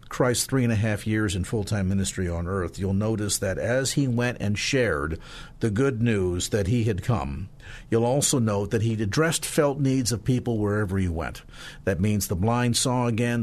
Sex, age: male, 50-69